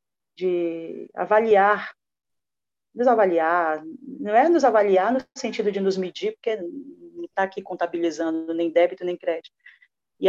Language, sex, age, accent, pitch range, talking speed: Portuguese, female, 30-49, Brazilian, 175-230 Hz, 135 wpm